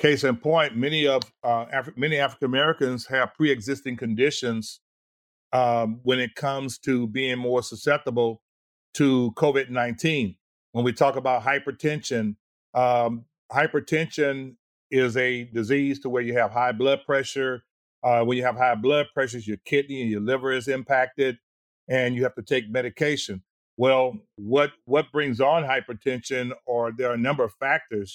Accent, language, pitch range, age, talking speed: American, English, 120-140 Hz, 50-69, 155 wpm